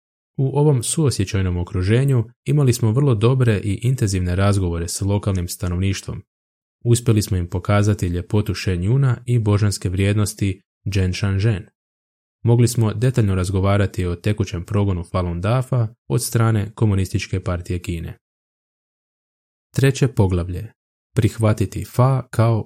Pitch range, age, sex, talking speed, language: 95-120 Hz, 20-39, male, 120 wpm, Croatian